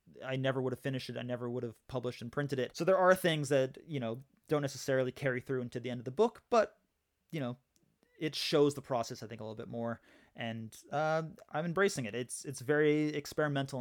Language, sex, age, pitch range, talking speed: English, male, 20-39, 125-155 Hz, 230 wpm